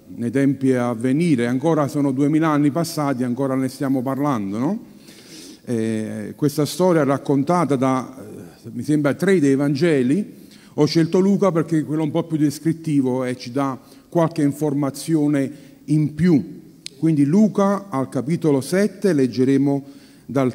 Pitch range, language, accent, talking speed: 135-180 Hz, Italian, native, 140 wpm